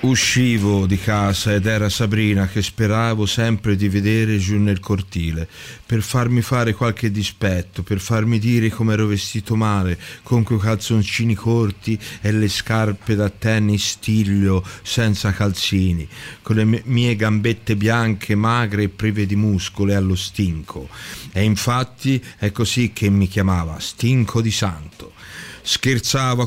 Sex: male